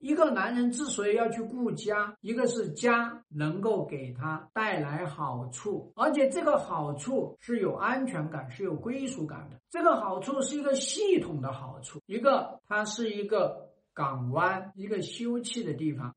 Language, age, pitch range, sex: Chinese, 60-79, 150-240 Hz, male